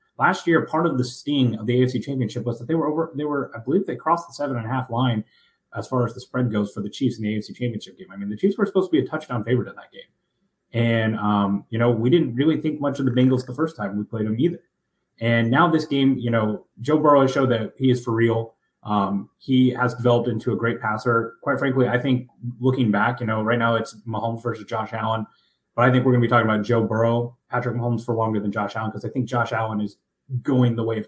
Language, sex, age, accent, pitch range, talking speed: English, male, 20-39, American, 110-130 Hz, 270 wpm